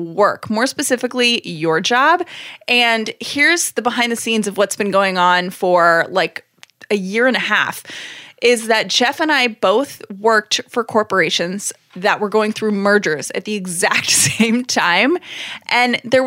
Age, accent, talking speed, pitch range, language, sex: 20-39, American, 160 wpm, 195-255 Hz, English, female